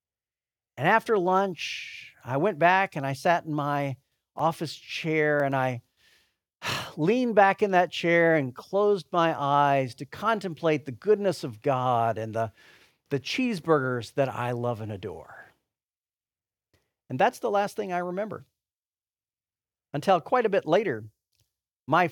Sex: male